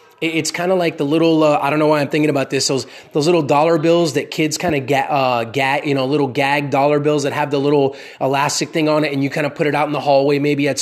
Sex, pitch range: male, 145-180 Hz